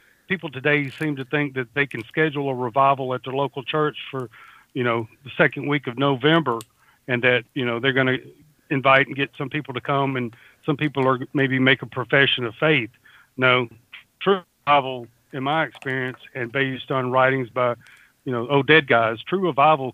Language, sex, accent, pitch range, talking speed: English, male, American, 125-150 Hz, 195 wpm